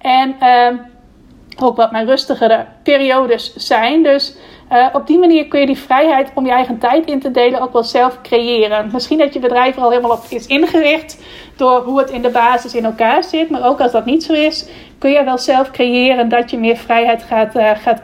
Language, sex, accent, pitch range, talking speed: Dutch, female, Dutch, 235-275 Hz, 220 wpm